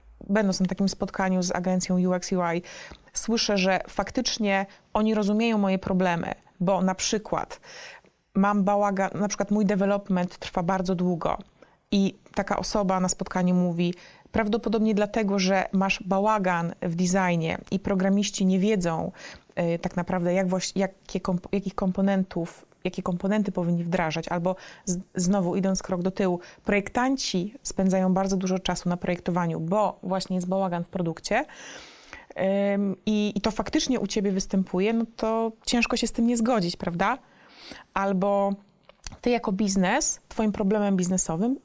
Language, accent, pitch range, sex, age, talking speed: Polish, native, 185-215 Hz, female, 30-49, 140 wpm